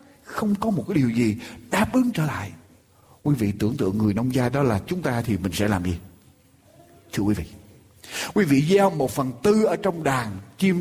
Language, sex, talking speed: Vietnamese, male, 215 wpm